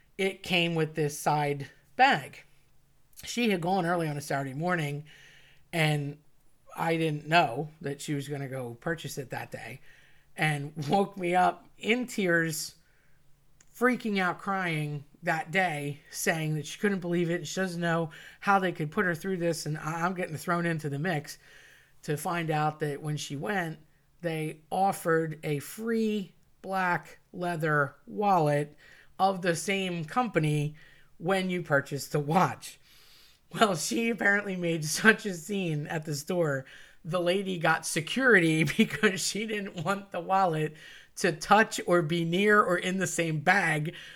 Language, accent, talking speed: English, American, 155 wpm